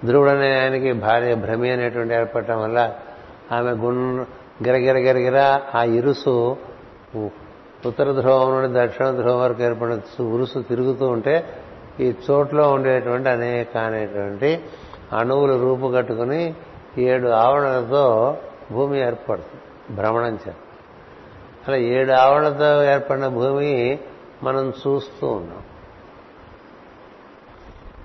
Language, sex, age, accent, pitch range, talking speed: Telugu, male, 60-79, native, 120-135 Hz, 90 wpm